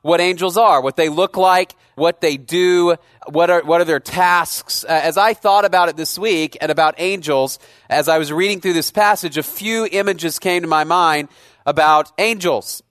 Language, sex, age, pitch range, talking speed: English, male, 30-49, 155-185 Hz, 200 wpm